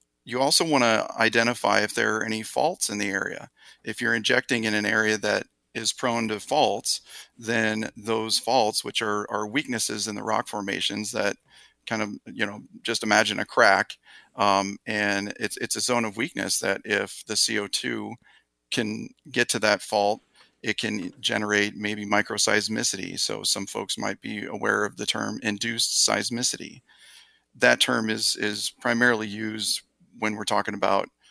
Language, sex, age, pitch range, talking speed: English, male, 40-59, 105-115 Hz, 165 wpm